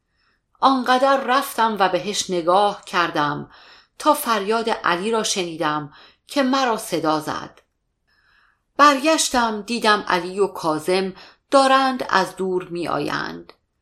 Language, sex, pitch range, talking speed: Persian, female, 170-245 Hz, 105 wpm